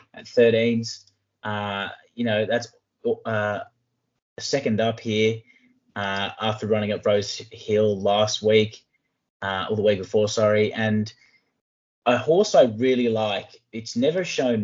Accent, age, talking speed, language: Australian, 20-39, 140 wpm, English